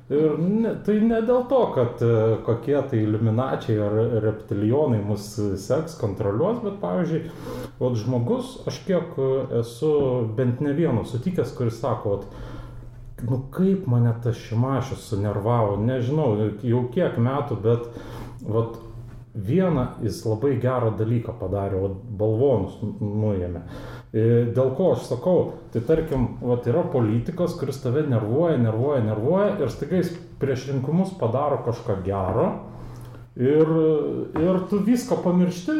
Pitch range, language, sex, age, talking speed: 115-155 Hz, Polish, male, 30-49, 125 wpm